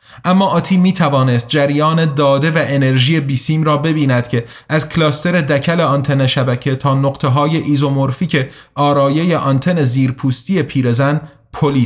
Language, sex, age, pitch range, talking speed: Persian, male, 30-49, 140-170 Hz, 130 wpm